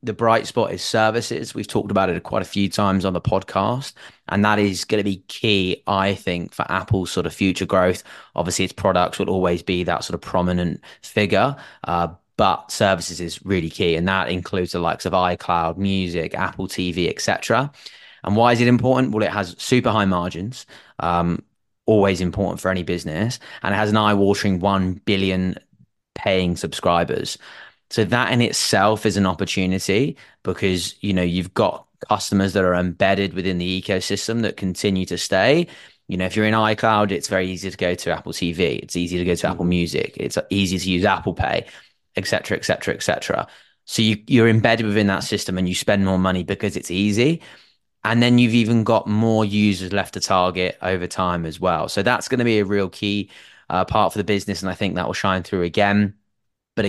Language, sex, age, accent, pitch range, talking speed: English, male, 20-39, British, 90-105 Hz, 205 wpm